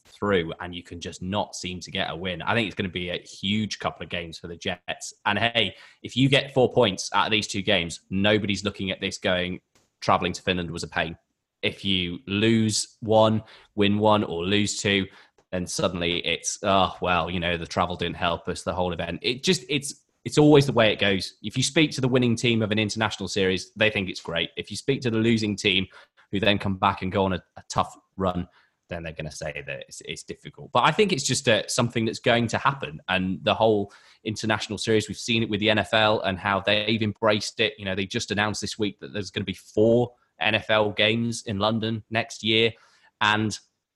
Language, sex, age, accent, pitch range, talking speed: English, male, 20-39, British, 95-110 Hz, 230 wpm